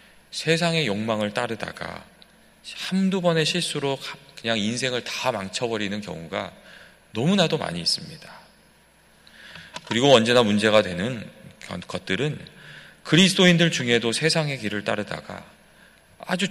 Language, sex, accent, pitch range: Korean, male, native, 105-160 Hz